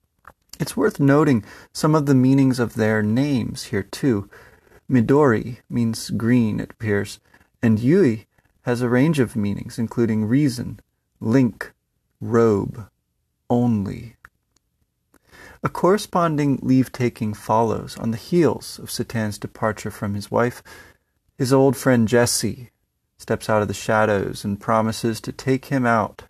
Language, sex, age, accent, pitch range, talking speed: English, male, 30-49, American, 110-135 Hz, 130 wpm